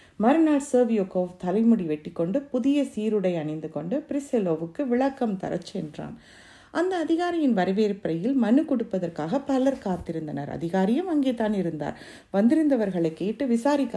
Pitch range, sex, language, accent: 180-255 Hz, female, Tamil, native